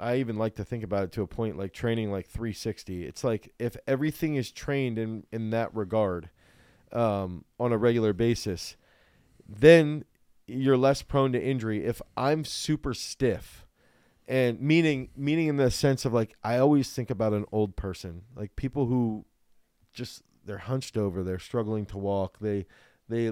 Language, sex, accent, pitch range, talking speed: English, male, American, 105-130 Hz, 170 wpm